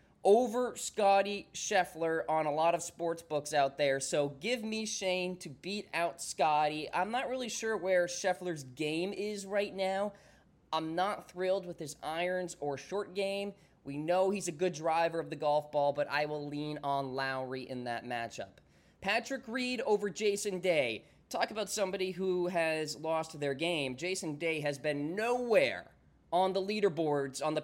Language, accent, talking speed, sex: English, American, 175 wpm, male